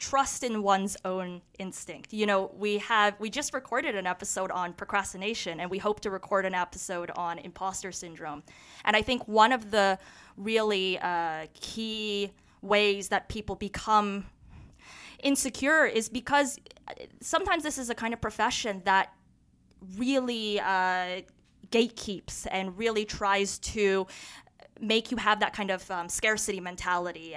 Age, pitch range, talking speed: 20-39, 185-215 Hz, 145 wpm